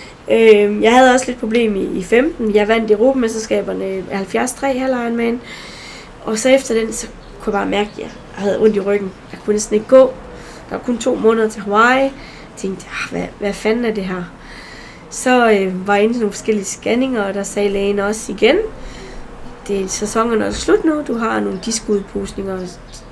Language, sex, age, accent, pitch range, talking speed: Danish, female, 20-39, native, 205-245 Hz, 200 wpm